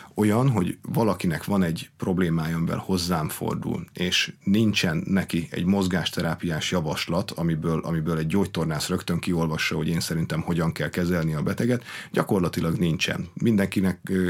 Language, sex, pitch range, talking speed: Hungarian, male, 85-100 Hz, 135 wpm